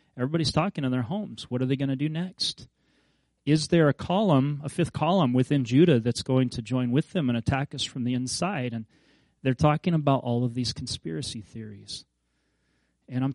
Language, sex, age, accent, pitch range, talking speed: English, male, 30-49, American, 115-140 Hz, 200 wpm